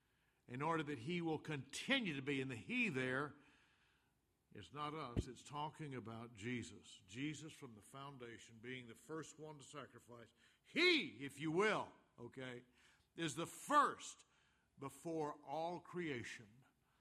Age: 60-79